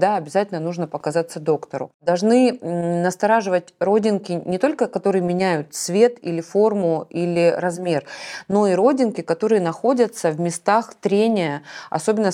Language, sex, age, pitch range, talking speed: Russian, female, 20-39, 160-200 Hz, 125 wpm